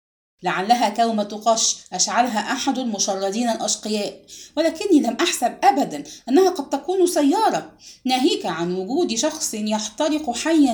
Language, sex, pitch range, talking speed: English, female, 210-310 Hz, 115 wpm